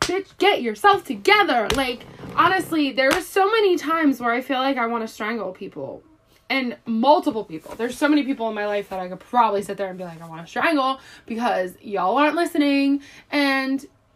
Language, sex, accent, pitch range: English, female, American, 200-280 Hz